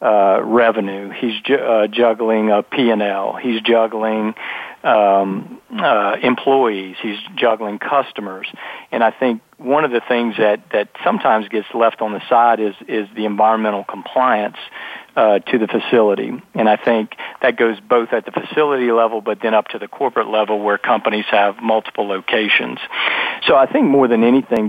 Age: 50-69